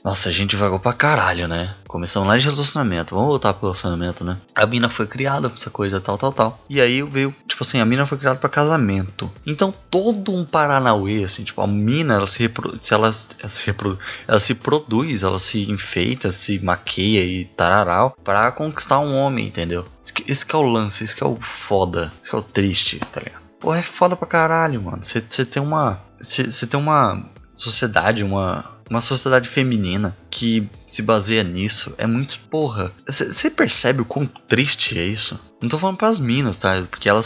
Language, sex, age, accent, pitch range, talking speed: Portuguese, male, 20-39, Brazilian, 100-130 Hz, 200 wpm